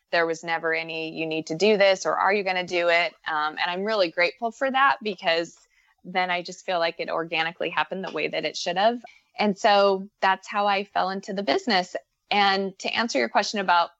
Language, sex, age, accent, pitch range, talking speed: English, female, 20-39, American, 165-205 Hz, 225 wpm